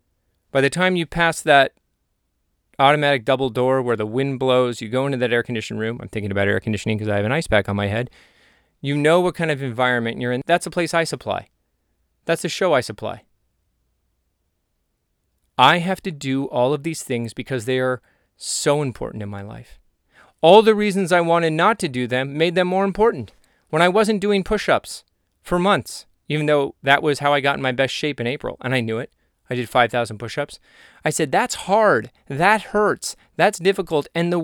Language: English